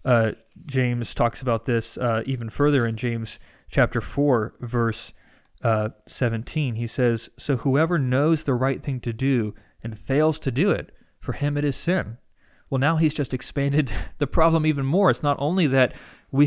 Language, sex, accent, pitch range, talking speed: English, male, American, 120-150 Hz, 180 wpm